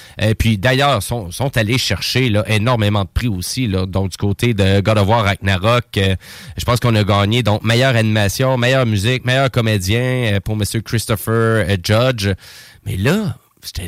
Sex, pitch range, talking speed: male, 100-135 Hz, 175 wpm